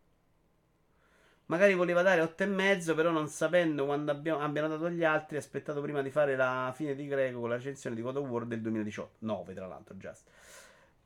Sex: male